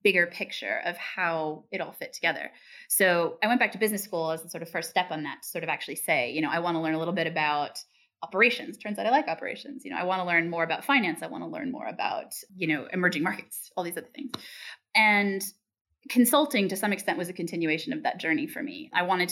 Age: 20-39